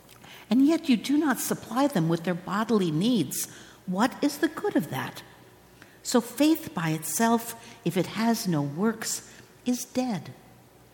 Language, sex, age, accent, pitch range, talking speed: English, female, 60-79, American, 165-260 Hz, 155 wpm